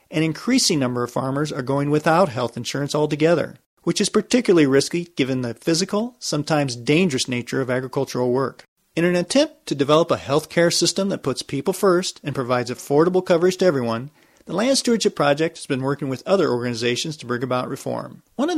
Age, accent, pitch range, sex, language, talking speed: 40-59, American, 135-185 Hz, male, English, 190 wpm